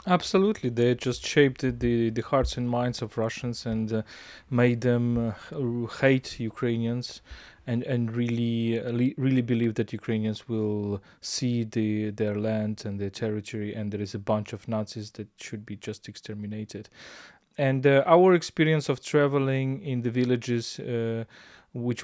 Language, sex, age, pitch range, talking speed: English, male, 20-39, 110-135 Hz, 150 wpm